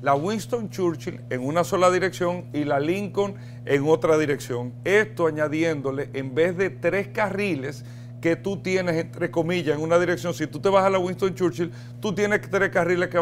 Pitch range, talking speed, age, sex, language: 140-180 Hz, 185 wpm, 40-59, male, Spanish